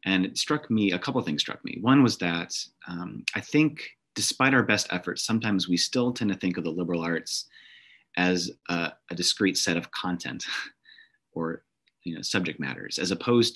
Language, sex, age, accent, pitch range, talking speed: English, male, 30-49, American, 85-105 Hz, 185 wpm